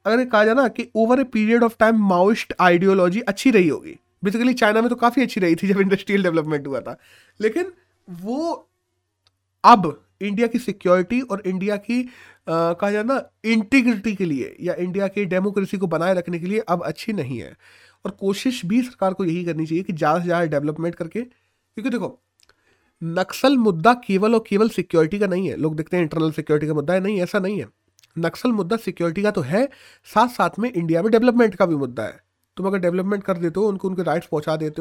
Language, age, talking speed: Hindi, 30-49, 205 wpm